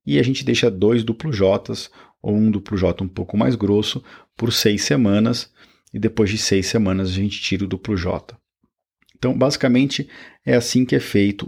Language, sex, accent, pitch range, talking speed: Portuguese, male, Brazilian, 95-120 Hz, 190 wpm